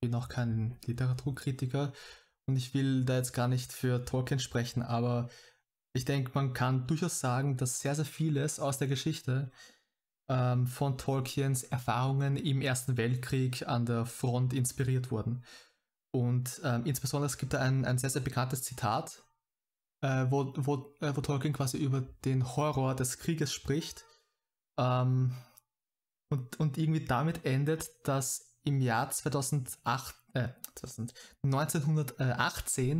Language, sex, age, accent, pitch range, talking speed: German, male, 20-39, German, 125-145 Hz, 140 wpm